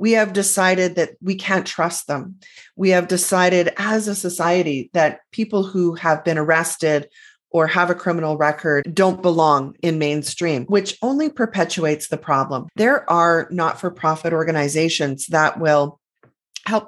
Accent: American